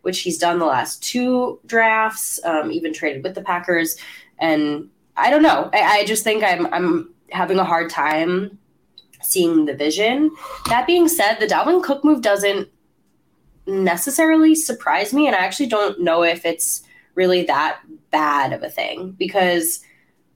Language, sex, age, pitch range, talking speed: English, female, 10-29, 165-230 Hz, 160 wpm